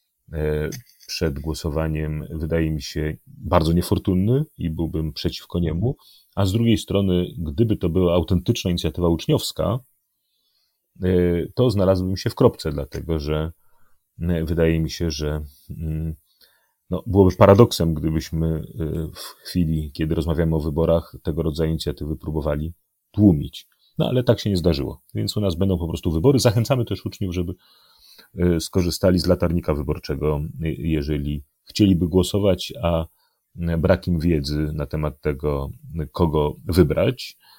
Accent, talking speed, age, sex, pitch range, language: native, 125 wpm, 30-49, male, 80-95 Hz, Polish